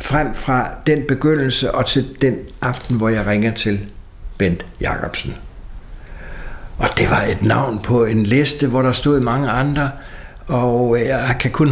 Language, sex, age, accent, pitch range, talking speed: Danish, male, 60-79, native, 100-135 Hz, 160 wpm